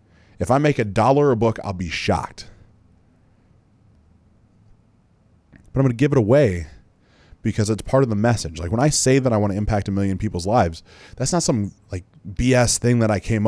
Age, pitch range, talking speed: 30-49, 100-135 Hz, 200 wpm